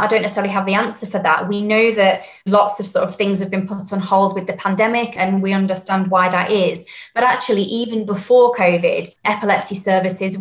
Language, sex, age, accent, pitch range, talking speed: English, female, 20-39, British, 190-210 Hz, 215 wpm